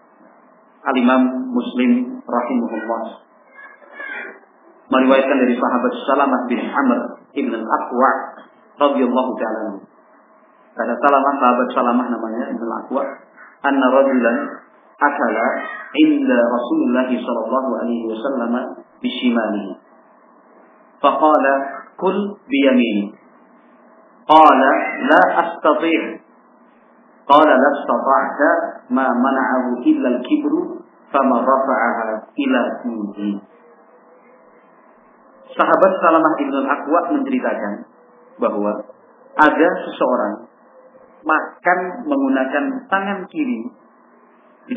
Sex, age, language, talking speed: male, 40-59, Indonesian, 55 wpm